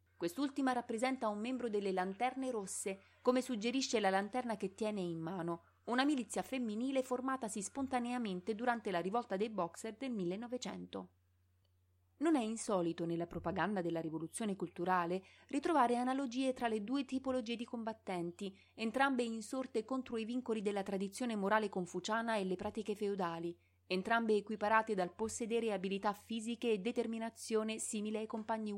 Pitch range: 185-245 Hz